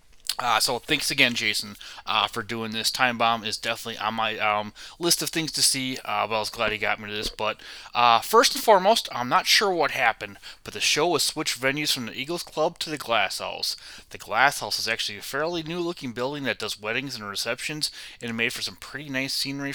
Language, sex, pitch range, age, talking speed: English, male, 110-140 Hz, 20-39, 235 wpm